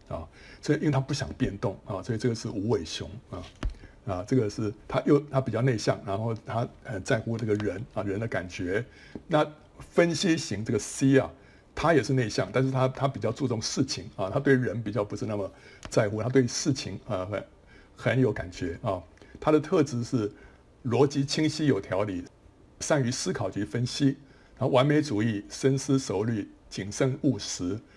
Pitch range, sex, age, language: 105-135 Hz, male, 60-79, Chinese